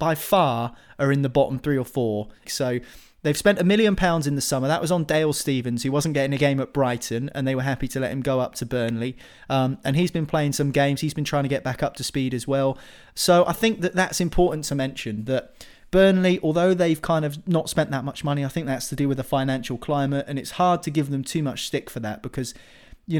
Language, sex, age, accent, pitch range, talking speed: English, male, 20-39, British, 130-150 Hz, 260 wpm